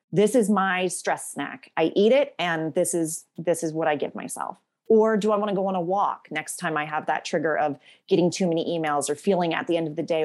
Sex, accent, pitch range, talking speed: female, American, 160-200 Hz, 265 wpm